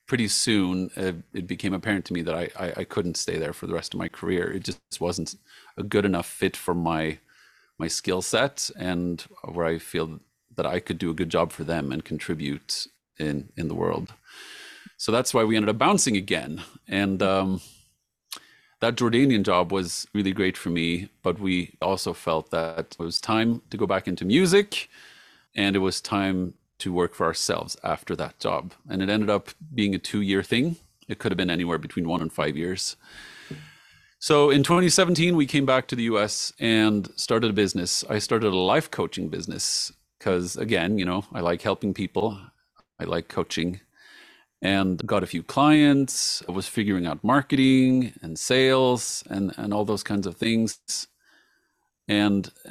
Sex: male